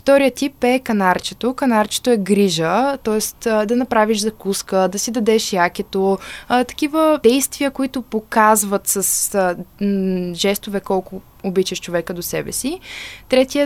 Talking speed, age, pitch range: 125 wpm, 20-39, 190-240 Hz